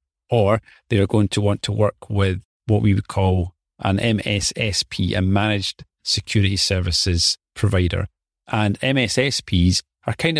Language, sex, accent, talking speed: English, male, British, 140 wpm